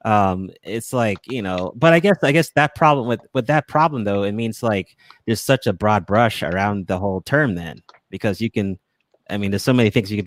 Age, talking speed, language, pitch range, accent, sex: 30-49, 240 wpm, English, 95-115 Hz, American, male